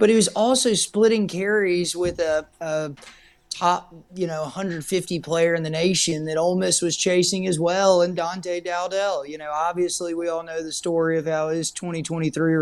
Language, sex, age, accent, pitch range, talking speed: English, male, 30-49, American, 145-175 Hz, 185 wpm